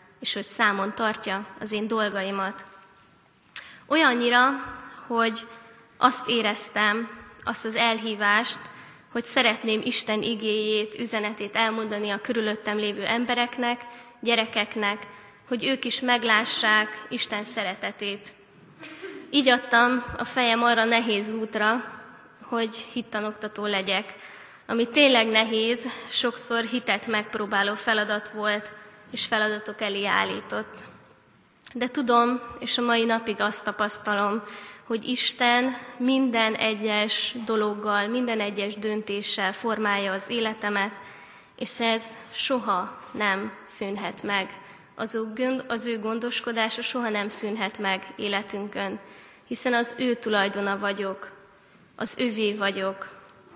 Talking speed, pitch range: 105 wpm, 205-235 Hz